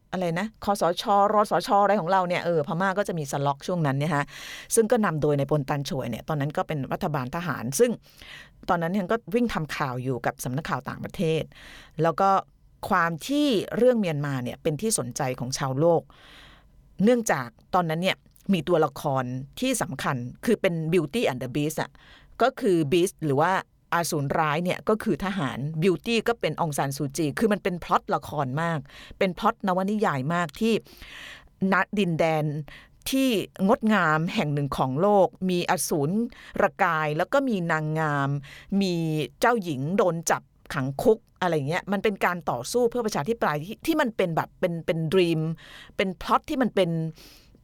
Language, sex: Thai, female